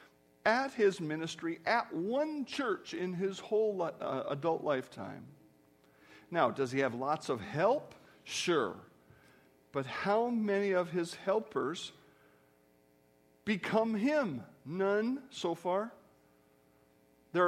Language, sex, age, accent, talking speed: English, male, 50-69, American, 105 wpm